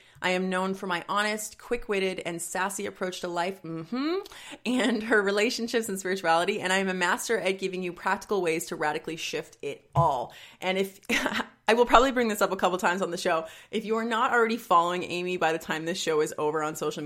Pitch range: 165-230 Hz